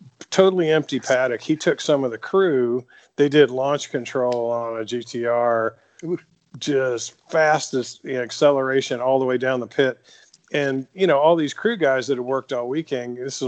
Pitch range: 120-145 Hz